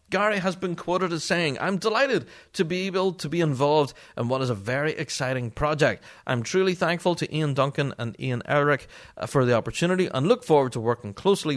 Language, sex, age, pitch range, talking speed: English, male, 30-49, 115-165 Hz, 200 wpm